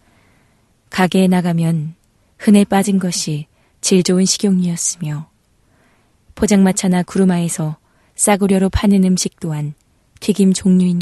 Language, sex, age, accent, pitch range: Korean, female, 20-39, native, 160-195 Hz